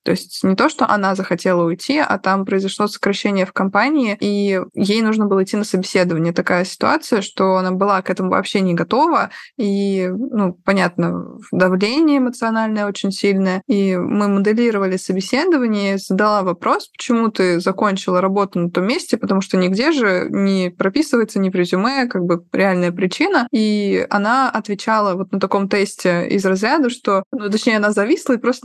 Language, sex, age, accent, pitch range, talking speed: Russian, female, 20-39, native, 190-220 Hz, 165 wpm